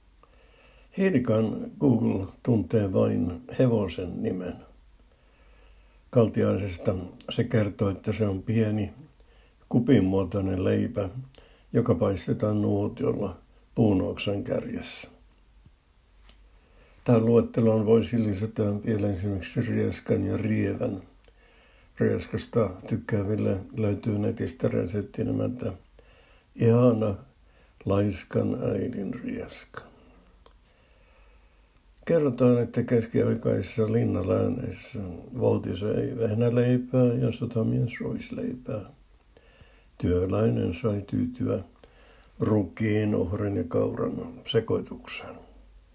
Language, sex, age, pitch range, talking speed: Finnish, male, 60-79, 95-115 Hz, 75 wpm